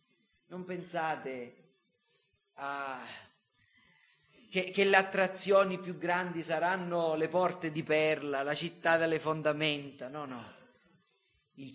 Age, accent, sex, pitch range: 40-59, native, male, 135-175 Hz